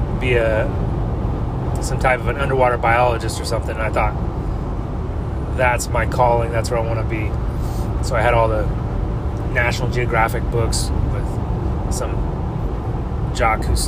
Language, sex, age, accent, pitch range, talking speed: English, male, 30-49, American, 110-125 Hz, 145 wpm